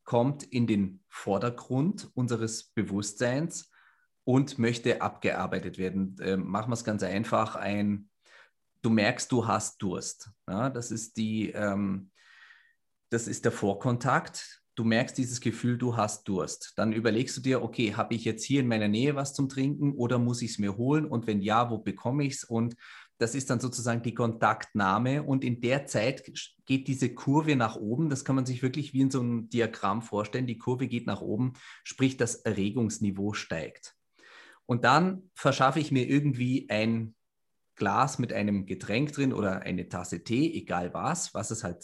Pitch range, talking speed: 110-130 Hz, 175 wpm